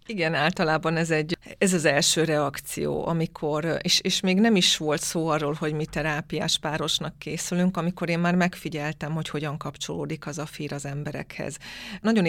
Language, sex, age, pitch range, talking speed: Hungarian, female, 30-49, 150-170 Hz, 170 wpm